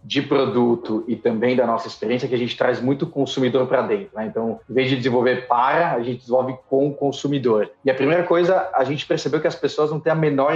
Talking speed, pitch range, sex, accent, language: 240 wpm, 140-180 Hz, male, Brazilian, Portuguese